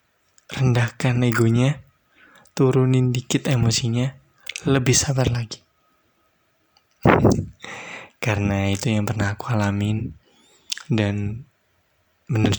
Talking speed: 75 wpm